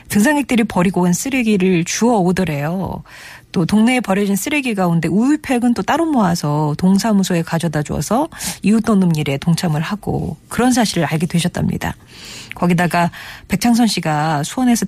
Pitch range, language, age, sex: 160-210 Hz, Korean, 40-59, female